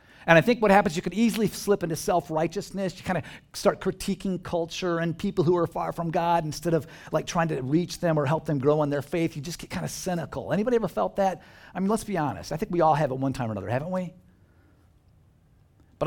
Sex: male